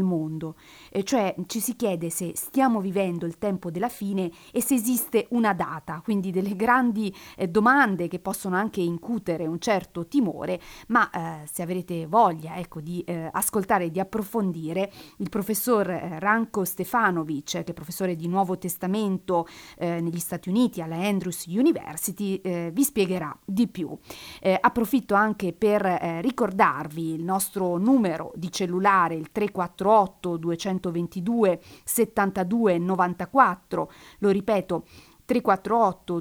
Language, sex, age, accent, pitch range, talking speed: Italian, female, 40-59, native, 170-220 Hz, 140 wpm